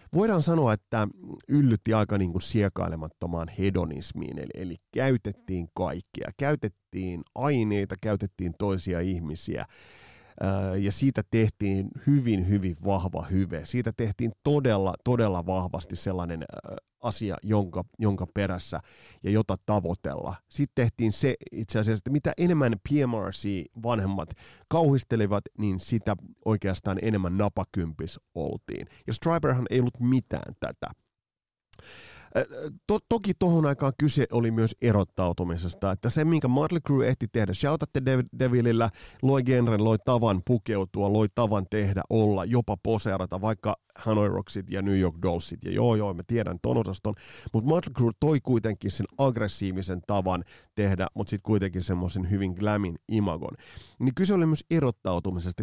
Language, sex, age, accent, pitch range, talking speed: Finnish, male, 30-49, native, 95-125 Hz, 130 wpm